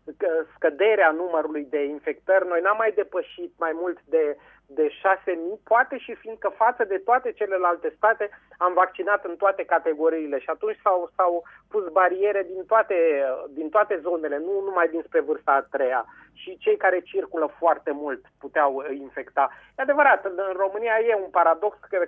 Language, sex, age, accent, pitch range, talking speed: Romanian, male, 30-49, native, 170-225 Hz, 160 wpm